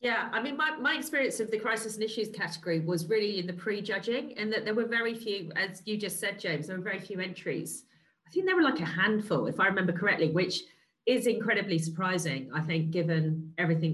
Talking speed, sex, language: 230 wpm, female, English